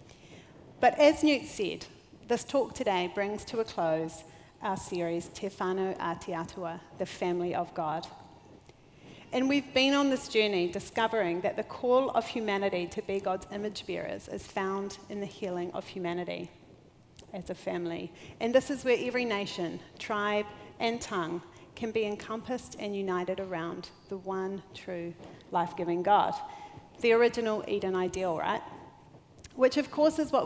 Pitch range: 185-230 Hz